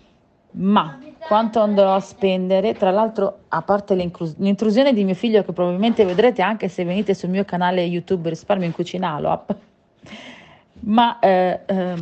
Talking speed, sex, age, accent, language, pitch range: 135 wpm, female, 40-59, native, Italian, 175-205 Hz